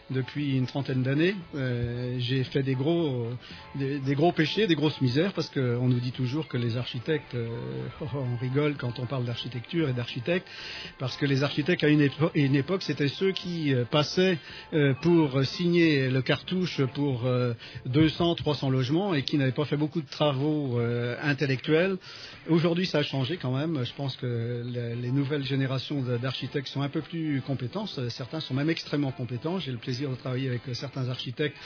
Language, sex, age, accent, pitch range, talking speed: French, male, 40-59, French, 125-155 Hz, 195 wpm